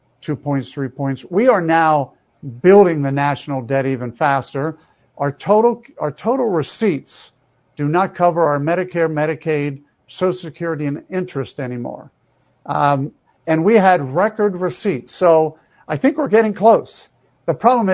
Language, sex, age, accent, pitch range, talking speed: English, male, 50-69, American, 140-185 Hz, 145 wpm